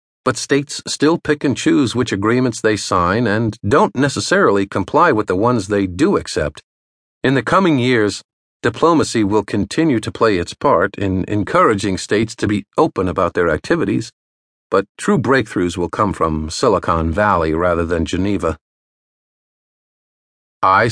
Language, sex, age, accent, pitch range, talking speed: English, male, 50-69, American, 90-130 Hz, 150 wpm